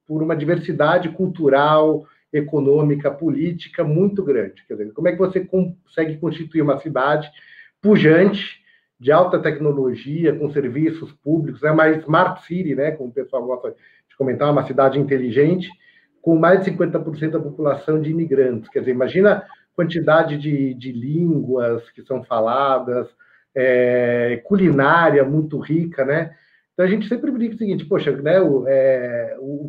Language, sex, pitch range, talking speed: Portuguese, male, 140-180 Hz, 150 wpm